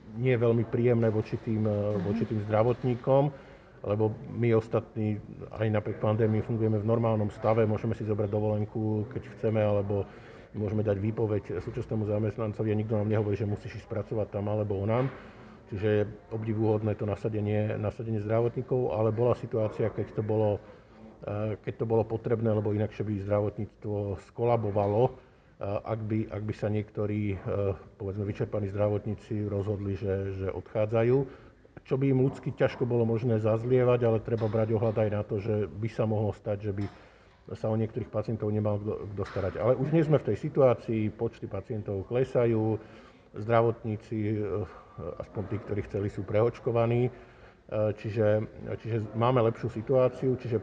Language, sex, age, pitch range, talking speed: Slovak, male, 50-69, 105-115 Hz, 155 wpm